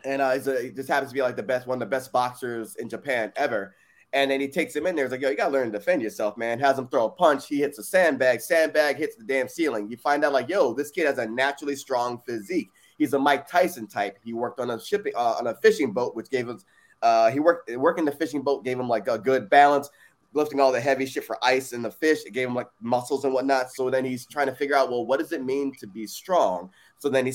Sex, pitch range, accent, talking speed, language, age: male, 120-145 Hz, American, 280 wpm, English, 20-39